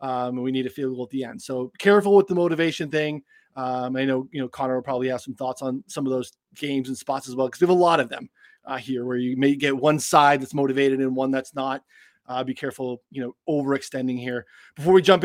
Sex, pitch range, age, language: male, 135-180 Hz, 20-39, English